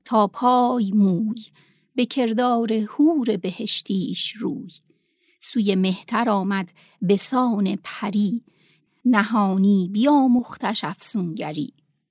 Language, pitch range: Persian, 190-245 Hz